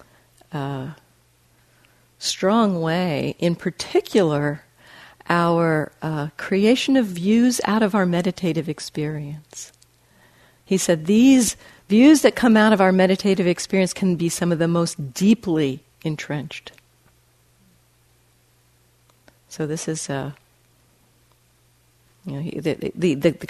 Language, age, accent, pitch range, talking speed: English, 50-69, American, 150-190 Hz, 105 wpm